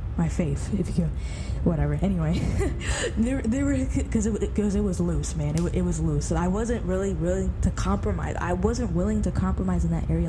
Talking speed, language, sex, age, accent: 200 wpm, English, female, 10-29, American